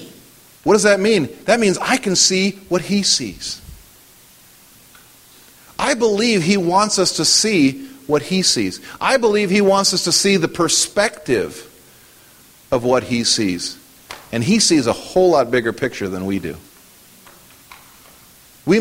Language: English